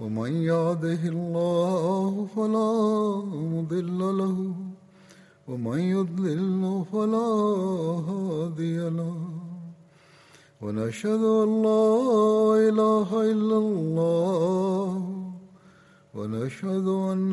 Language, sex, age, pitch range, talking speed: Swahili, male, 60-79, 170-215 Hz, 40 wpm